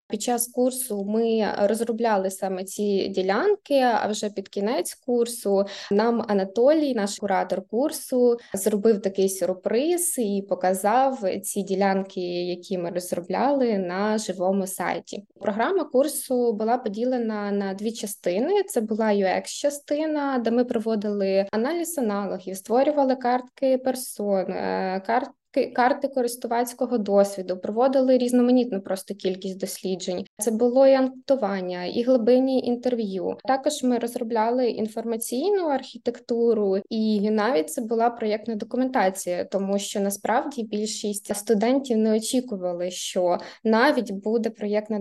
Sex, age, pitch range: female, 20-39, 200-250 Hz